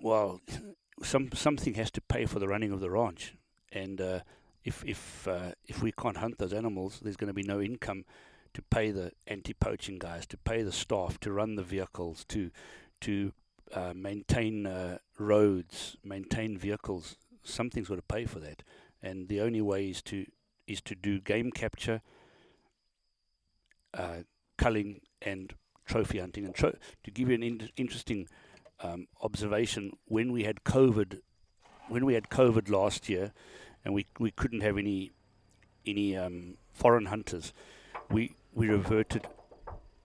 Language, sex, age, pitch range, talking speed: English, male, 60-79, 95-115 Hz, 155 wpm